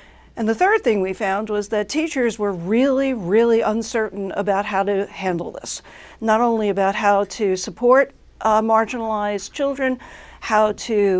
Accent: American